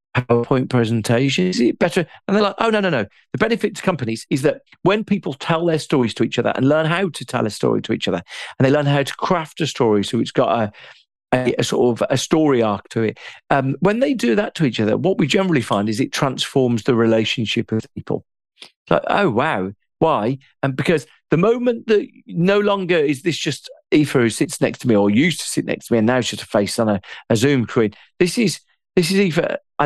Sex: male